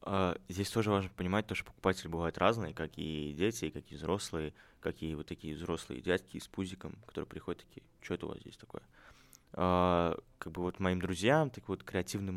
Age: 20-39